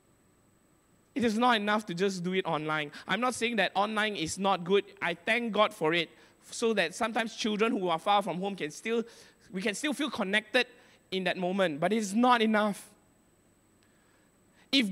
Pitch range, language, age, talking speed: 180-245 Hz, English, 20-39, 185 wpm